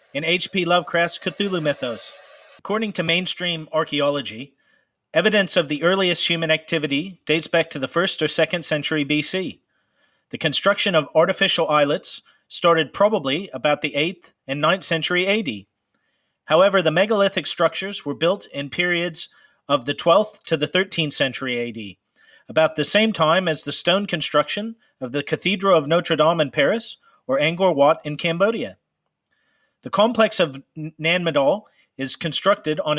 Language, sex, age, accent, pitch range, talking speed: English, male, 40-59, American, 145-190 Hz, 150 wpm